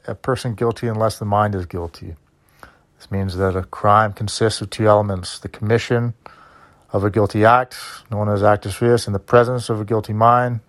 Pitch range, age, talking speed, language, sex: 100-135 Hz, 30-49, 190 wpm, English, male